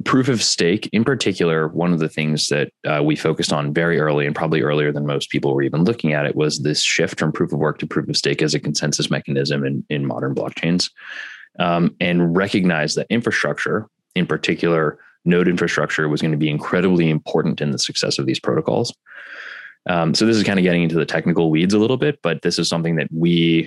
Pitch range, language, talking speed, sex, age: 75-85 Hz, English, 220 wpm, male, 20-39